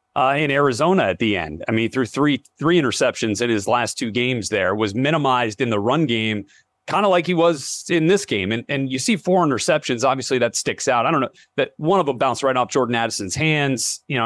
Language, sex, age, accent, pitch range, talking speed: English, male, 30-49, American, 115-150 Hz, 240 wpm